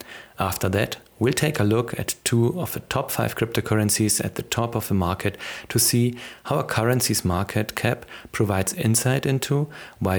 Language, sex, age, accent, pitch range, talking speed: English, male, 40-59, German, 105-125 Hz, 175 wpm